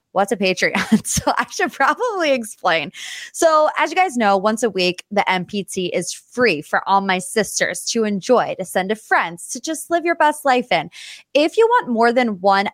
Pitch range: 185-255 Hz